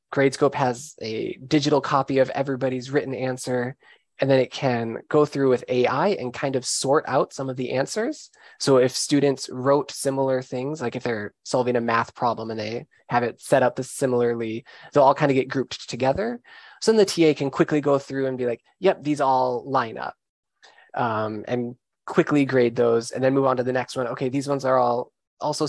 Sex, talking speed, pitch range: male, 205 wpm, 125-145 Hz